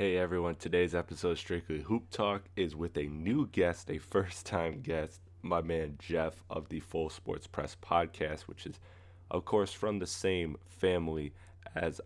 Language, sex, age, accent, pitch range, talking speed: English, male, 20-39, American, 80-90 Hz, 170 wpm